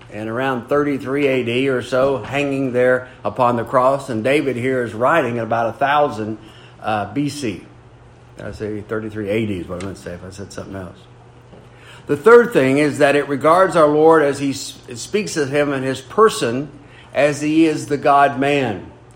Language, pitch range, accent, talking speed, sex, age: English, 120-155 Hz, American, 190 wpm, male, 50-69